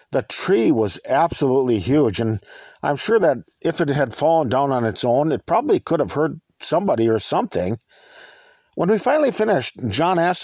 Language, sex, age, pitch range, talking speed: English, male, 50-69, 125-190 Hz, 180 wpm